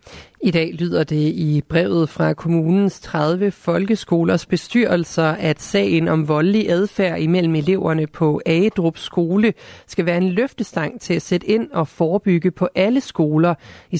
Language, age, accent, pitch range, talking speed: Danish, 30-49, native, 155-185 Hz, 150 wpm